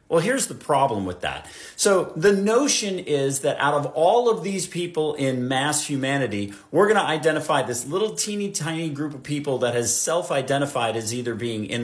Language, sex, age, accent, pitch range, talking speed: English, male, 50-69, American, 135-175 Hz, 195 wpm